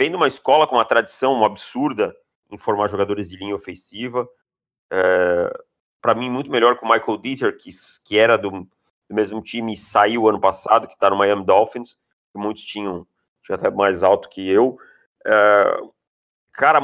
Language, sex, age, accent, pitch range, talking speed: Portuguese, male, 30-49, Brazilian, 110-150 Hz, 180 wpm